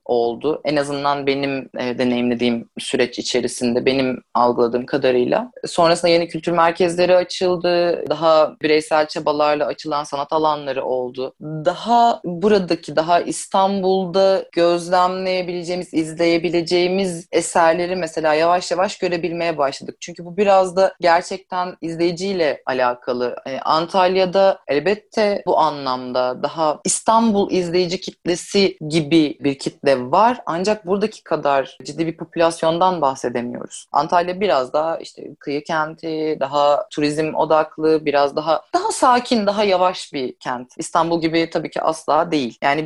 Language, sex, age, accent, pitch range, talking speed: Turkish, female, 30-49, native, 140-180 Hz, 120 wpm